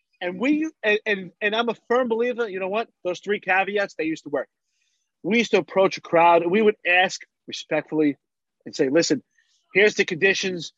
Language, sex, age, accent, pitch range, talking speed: English, male, 30-49, American, 180-225 Hz, 195 wpm